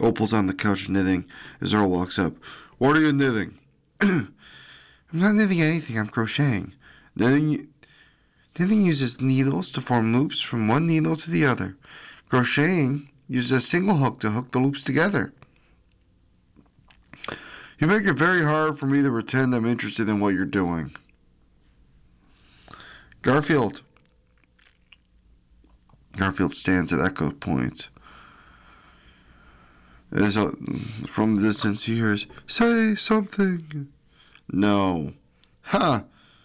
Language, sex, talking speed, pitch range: English, male, 120 wpm, 95-145 Hz